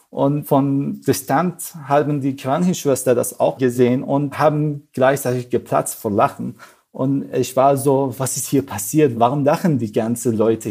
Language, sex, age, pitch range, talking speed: German, male, 40-59, 120-145 Hz, 155 wpm